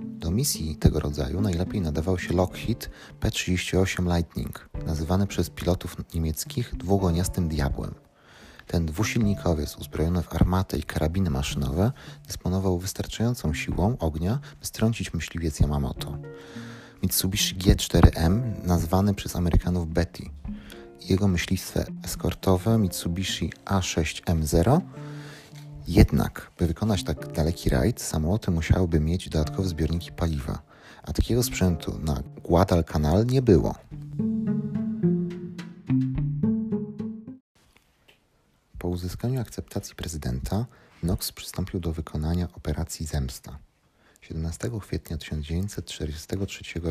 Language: Polish